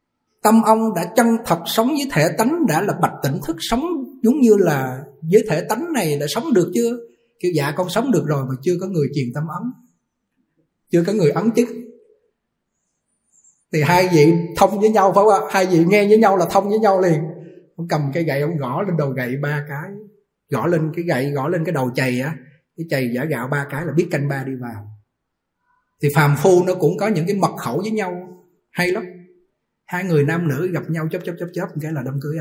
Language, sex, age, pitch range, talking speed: Vietnamese, male, 20-39, 150-210 Hz, 230 wpm